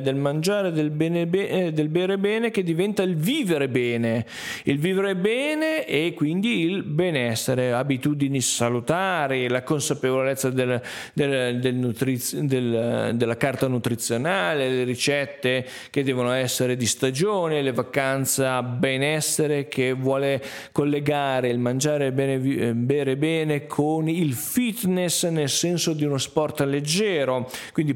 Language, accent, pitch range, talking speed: Italian, native, 125-155 Hz, 125 wpm